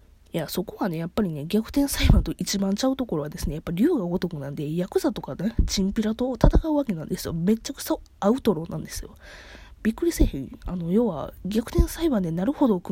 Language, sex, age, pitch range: Japanese, female, 20-39, 175-230 Hz